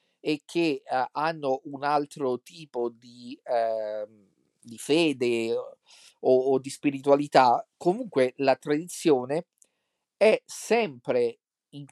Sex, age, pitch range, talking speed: male, 40-59, 130-165 Hz, 105 wpm